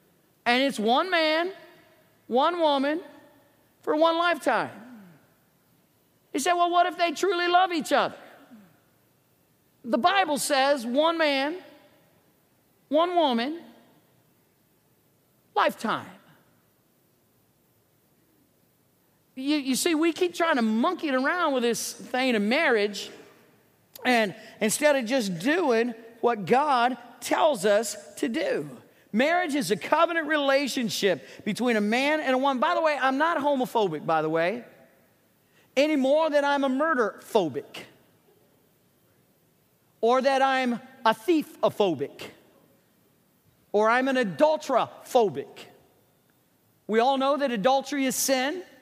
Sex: male